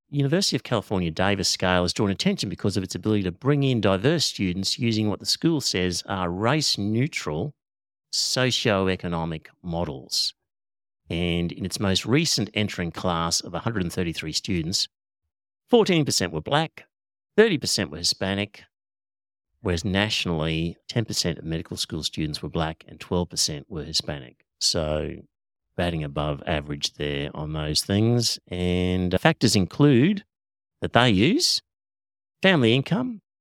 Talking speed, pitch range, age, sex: 130 wpm, 85-115 Hz, 50-69, male